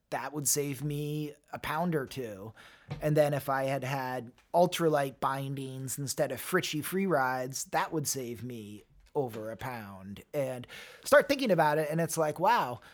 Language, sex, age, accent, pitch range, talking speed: English, male, 30-49, American, 130-160 Hz, 170 wpm